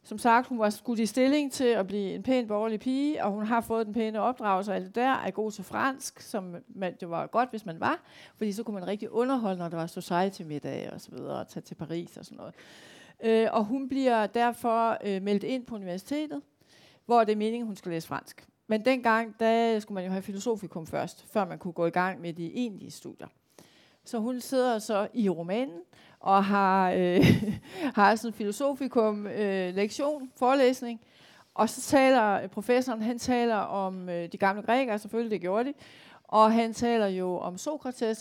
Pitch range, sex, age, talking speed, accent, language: 195-245 Hz, female, 40-59, 205 wpm, native, Danish